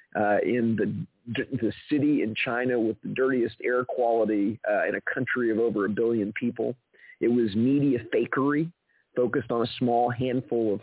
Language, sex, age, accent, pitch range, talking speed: English, male, 40-59, American, 110-130 Hz, 170 wpm